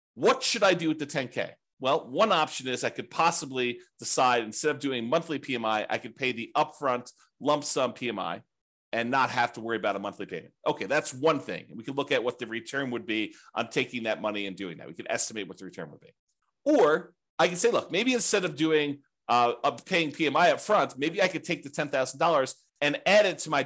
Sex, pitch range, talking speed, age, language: male, 125-165 Hz, 230 wpm, 40-59, English